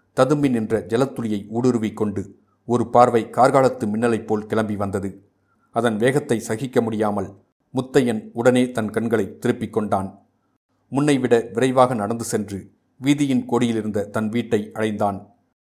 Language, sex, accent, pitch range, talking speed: Tamil, male, native, 105-125 Hz, 110 wpm